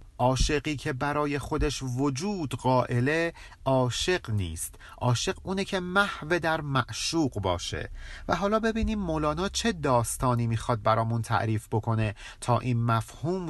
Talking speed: 125 wpm